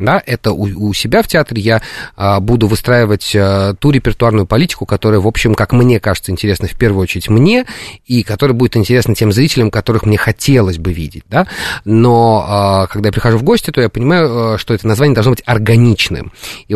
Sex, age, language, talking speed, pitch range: male, 30-49, Russian, 200 wpm, 100-125 Hz